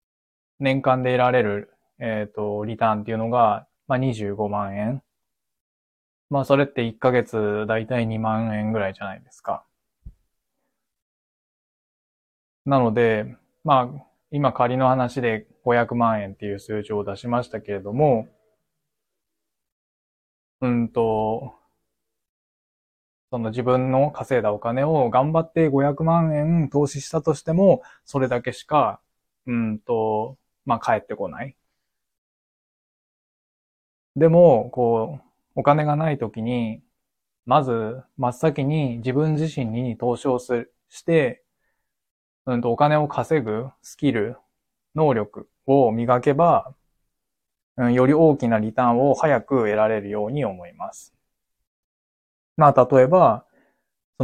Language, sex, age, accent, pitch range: Japanese, male, 20-39, native, 110-135 Hz